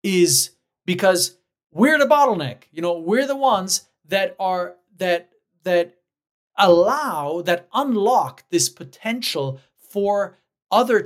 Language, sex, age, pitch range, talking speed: English, male, 40-59, 175-230 Hz, 115 wpm